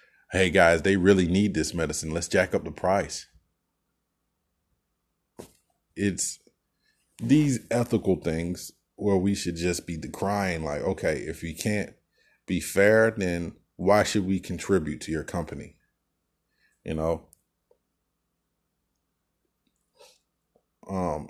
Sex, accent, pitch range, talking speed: male, American, 85-100 Hz, 115 wpm